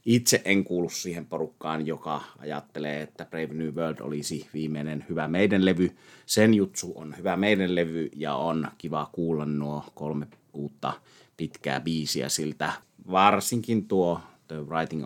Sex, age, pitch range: male, 30-49, 75-90 Hz